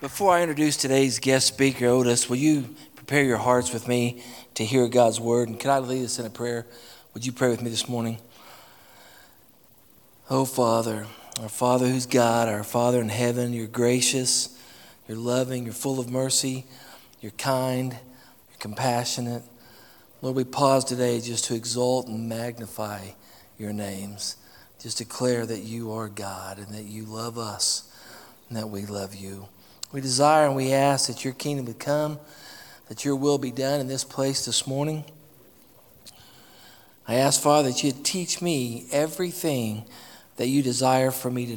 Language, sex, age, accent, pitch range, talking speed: English, male, 40-59, American, 115-135 Hz, 165 wpm